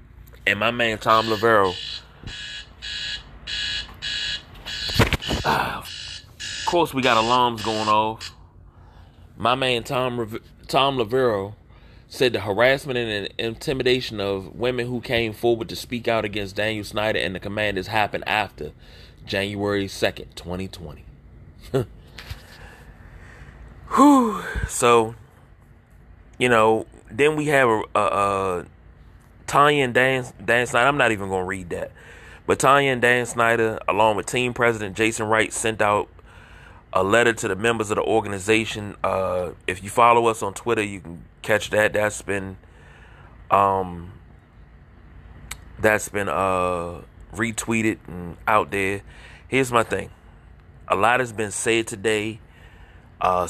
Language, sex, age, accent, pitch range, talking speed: English, male, 30-49, American, 95-120 Hz, 130 wpm